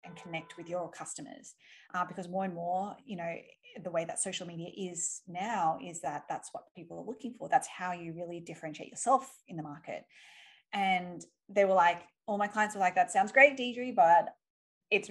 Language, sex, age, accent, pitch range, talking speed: English, female, 20-39, Australian, 175-225 Hz, 205 wpm